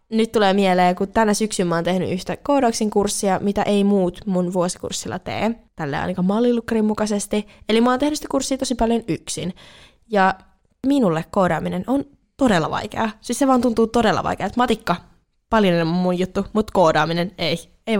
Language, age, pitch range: Finnish, 20-39, 180-235 Hz